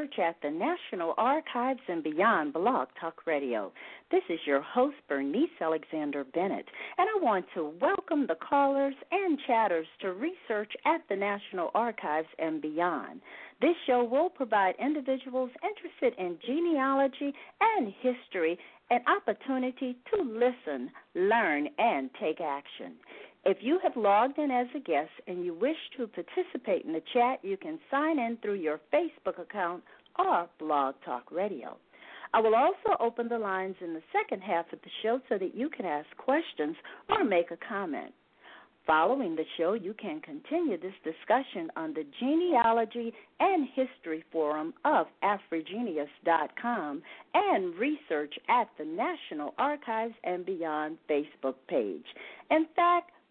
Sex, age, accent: female, 50-69, American